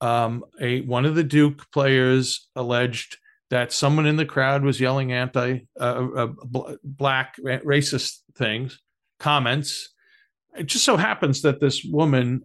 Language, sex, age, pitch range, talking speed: English, male, 50-69, 130-165 Hz, 140 wpm